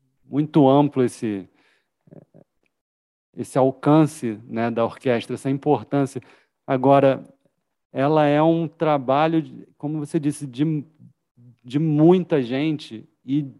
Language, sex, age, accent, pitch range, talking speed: Portuguese, male, 40-59, Brazilian, 125-150 Hz, 100 wpm